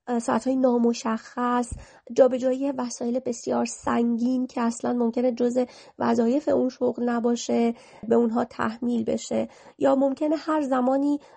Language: Persian